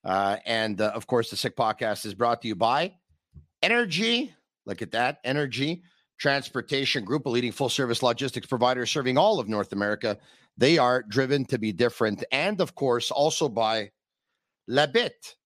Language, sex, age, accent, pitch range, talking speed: English, male, 50-69, American, 115-140 Hz, 165 wpm